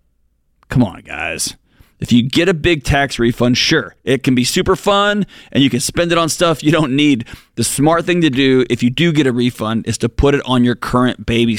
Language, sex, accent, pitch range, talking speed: English, male, American, 125-150 Hz, 235 wpm